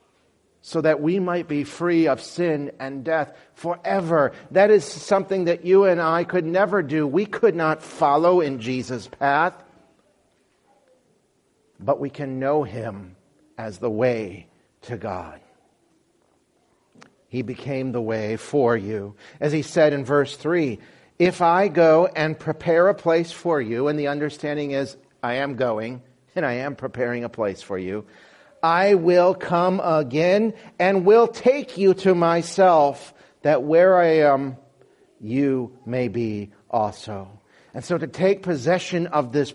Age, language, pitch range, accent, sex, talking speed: 50-69, English, 140-185 Hz, American, male, 150 wpm